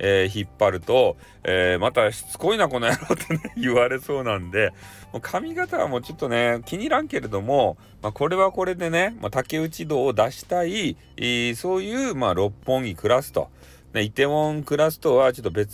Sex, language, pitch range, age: male, Japanese, 115-180 Hz, 40-59